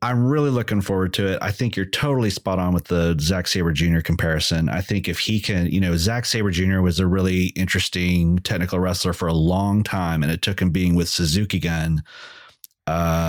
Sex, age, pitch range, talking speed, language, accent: male, 30-49, 90-105 Hz, 210 wpm, English, American